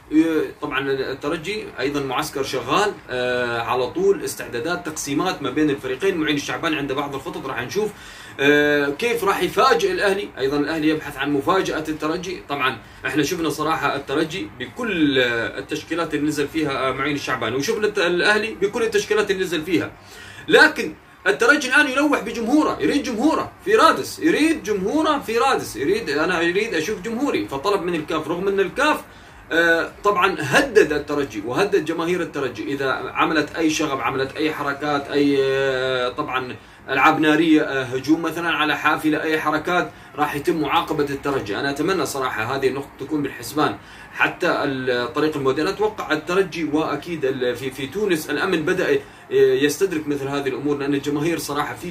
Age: 30-49